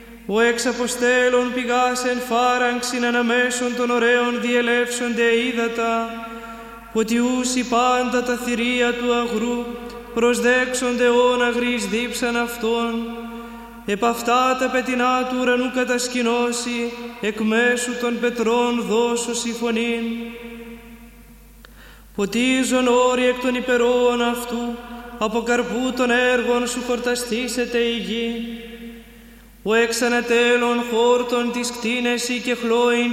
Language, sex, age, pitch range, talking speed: Greek, male, 20-39, 230-245 Hz, 100 wpm